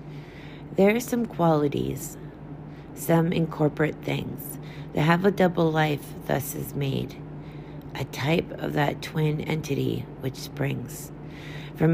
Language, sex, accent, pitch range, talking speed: English, female, American, 145-160 Hz, 120 wpm